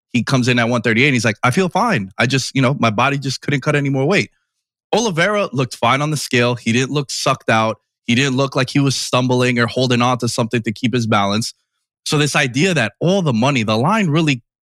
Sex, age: male, 20-39